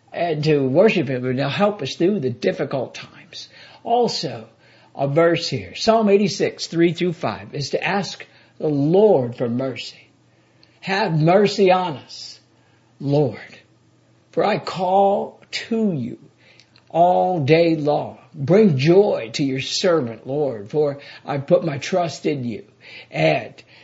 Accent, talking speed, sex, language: American, 140 wpm, male, English